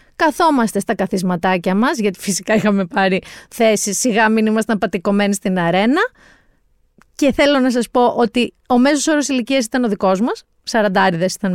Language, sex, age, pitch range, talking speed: Greek, female, 30-49, 210-320 Hz, 160 wpm